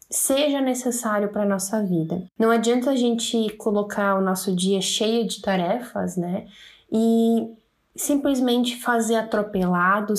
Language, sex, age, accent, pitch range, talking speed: Portuguese, female, 10-29, Brazilian, 195-235 Hz, 130 wpm